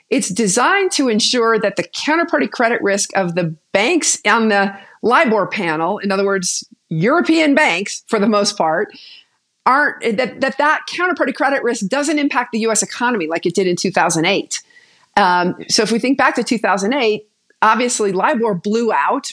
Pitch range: 195-265 Hz